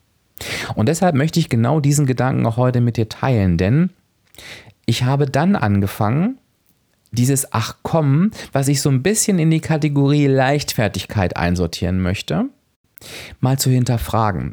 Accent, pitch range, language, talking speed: German, 110-145 Hz, German, 140 wpm